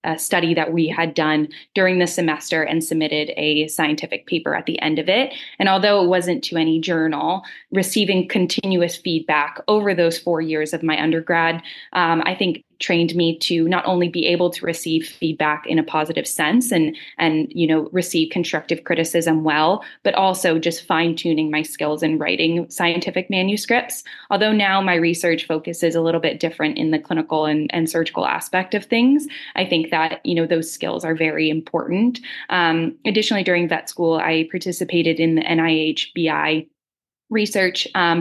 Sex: female